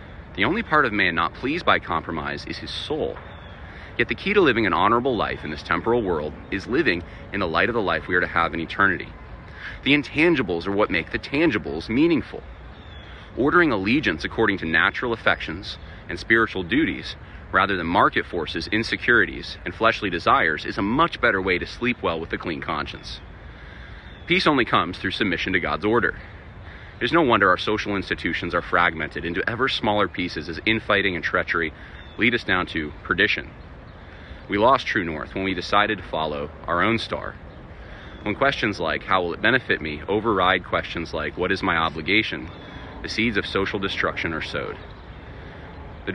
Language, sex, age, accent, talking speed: English, male, 30-49, American, 180 wpm